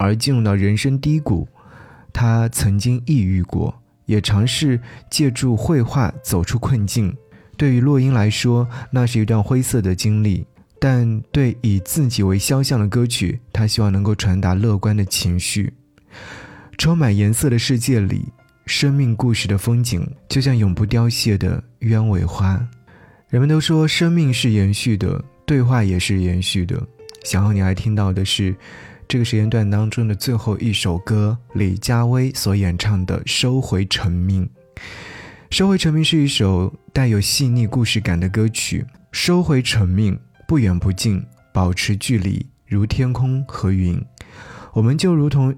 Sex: male